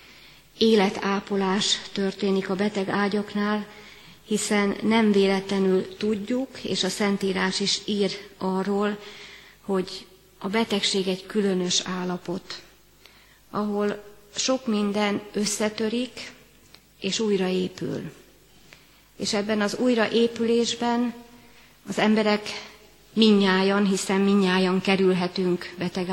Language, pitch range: Hungarian, 190-210 Hz